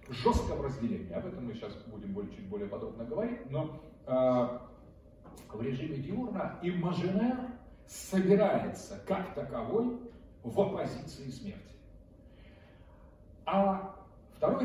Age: 40-59